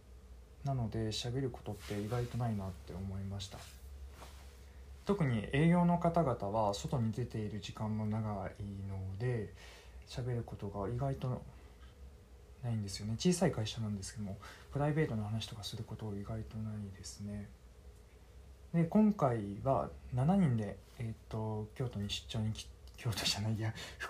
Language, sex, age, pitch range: Japanese, male, 20-39, 85-120 Hz